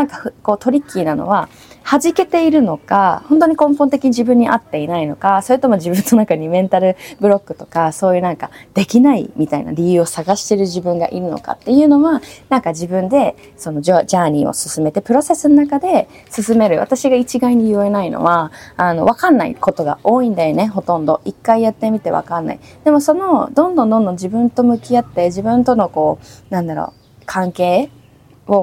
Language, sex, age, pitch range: Japanese, female, 20-39, 170-255 Hz